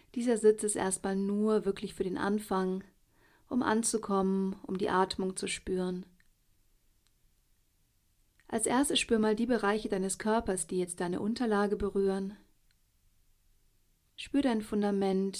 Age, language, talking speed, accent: 40-59, German, 125 wpm, German